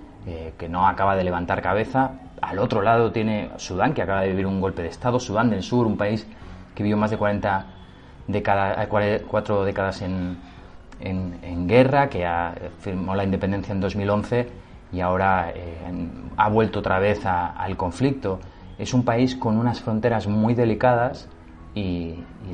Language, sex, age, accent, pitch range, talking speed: Spanish, male, 30-49, Spanish, 90-105 Hz, 170 wpm